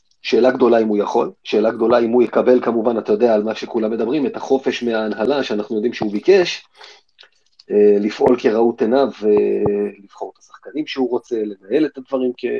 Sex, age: male, 30-49